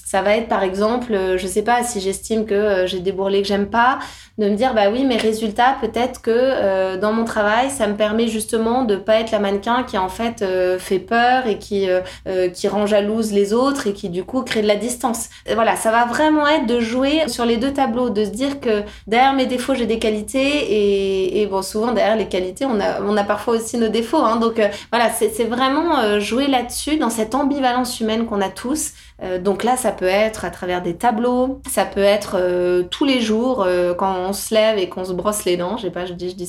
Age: 20-39